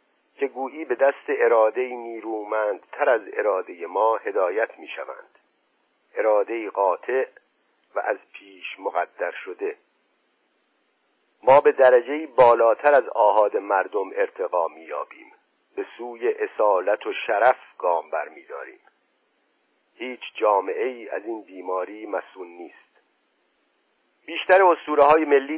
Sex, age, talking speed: male, 50-69, 115 wpm